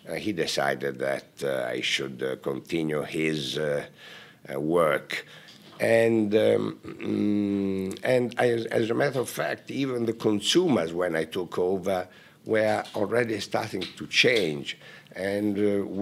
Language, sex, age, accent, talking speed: English, male, 60-79, Italian, 135 wpm